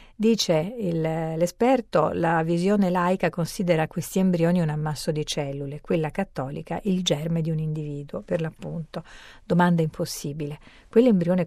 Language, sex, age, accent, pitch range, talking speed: Italian, female, 40-59, native, 160-190 Hz, 125 wpm